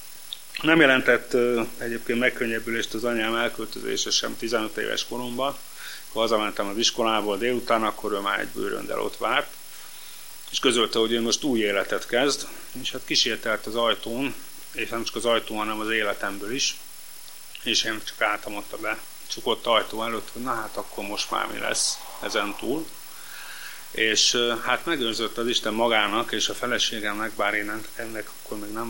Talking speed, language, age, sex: 165 wpm, Hungarian, 30-49, male